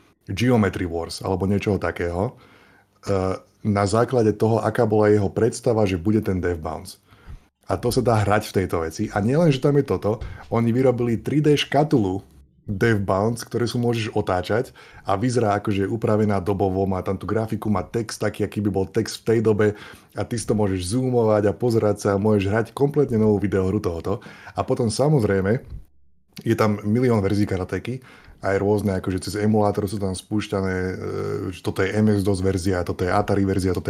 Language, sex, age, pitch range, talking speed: Slovak, male, 20-39, 95-115 Hz, 185 wpm